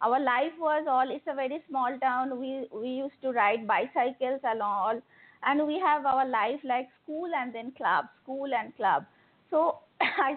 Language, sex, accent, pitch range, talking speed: English, female, Indian, 215-265 Hz, 180 wpm